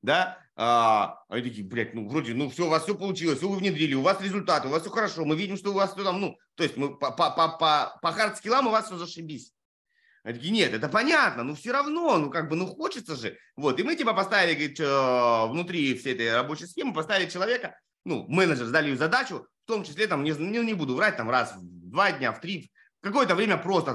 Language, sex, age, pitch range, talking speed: Russian, male, 30-49, 140-195 Hz, 240 wpm